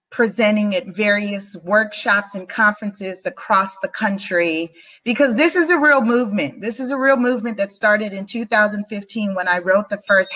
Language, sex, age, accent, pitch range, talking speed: English, female, 30-49, American, 185-230 Hz, 170 wpm